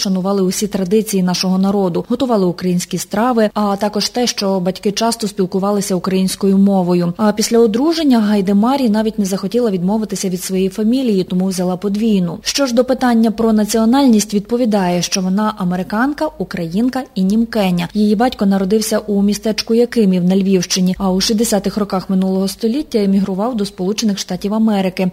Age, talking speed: 20-39, 150 wpm